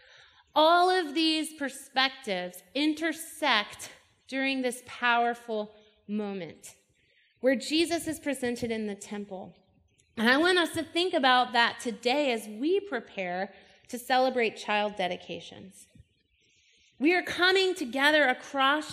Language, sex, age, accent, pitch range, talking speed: English, female, 30-49, American, 215-290 Hz, 115 wpm